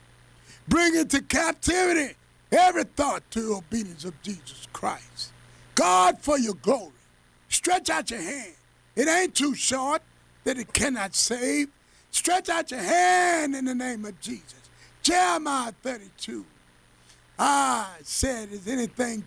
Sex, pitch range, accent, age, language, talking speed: male, 205-325 Hz, American, 50-69, English, 130 wpm